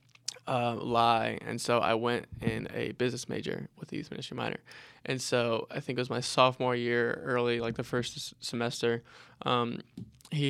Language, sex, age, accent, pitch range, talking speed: English, male, 20-39, American, 120-130 Hz, 175 wpm